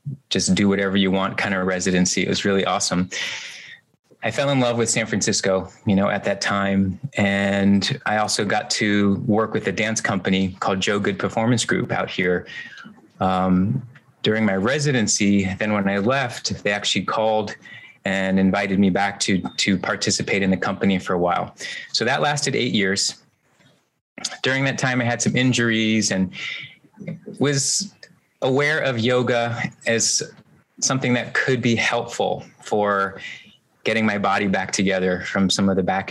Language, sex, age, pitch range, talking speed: English, male, 30-49, 95-115 Hz, 165 wpm